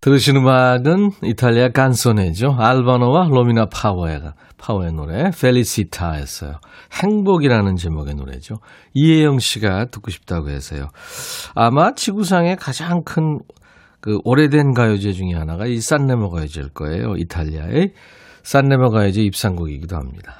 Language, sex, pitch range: Korean, male, 90-145 Hz